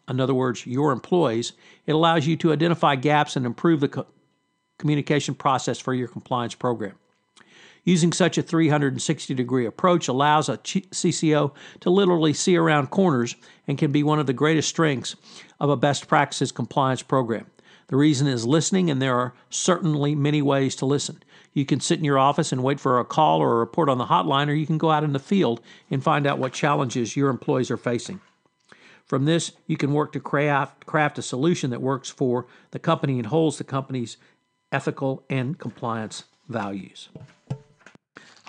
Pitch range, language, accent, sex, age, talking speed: 130-170 Hz, English, American, male, 60-79, 180 wpm